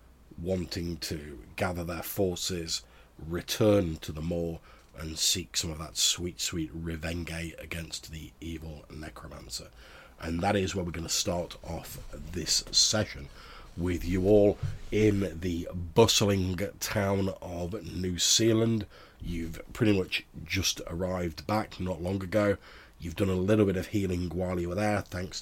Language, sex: English, male